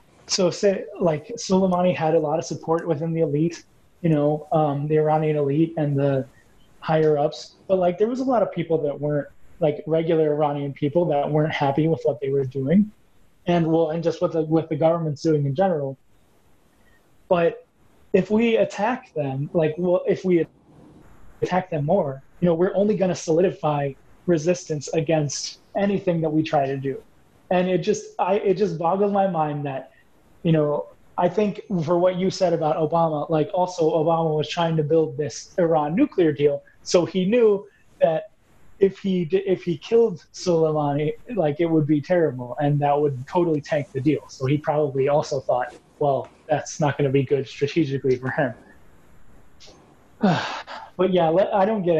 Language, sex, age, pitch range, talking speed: English, male, 20-39, 150-180 Hz, 180 wpm